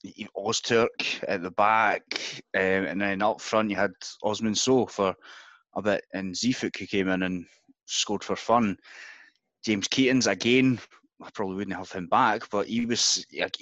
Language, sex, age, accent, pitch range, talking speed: English, male, 20-39, British, 95-115 Hz, 165 wpm